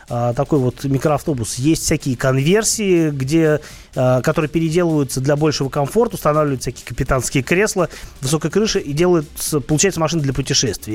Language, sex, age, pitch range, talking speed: Russian, male, 30-49, 130-165 Hz, 135 wpm